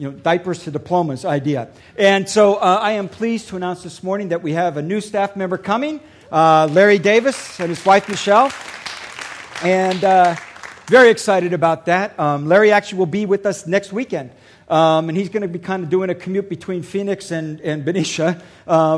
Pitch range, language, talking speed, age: 160-205 Hz, English, 200 wpm, 50-69